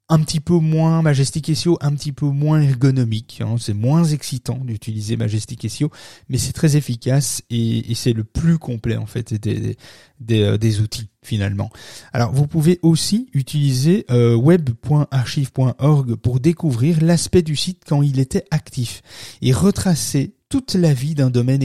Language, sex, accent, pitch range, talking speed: French, male, French, 120-150 Hz, 160 wpm